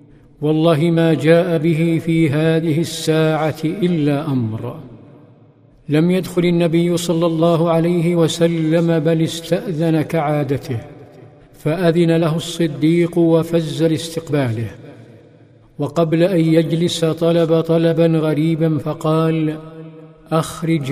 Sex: male